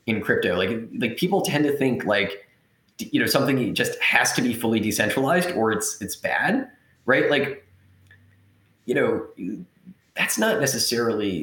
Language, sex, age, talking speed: English, male, 30-49, 150 wpm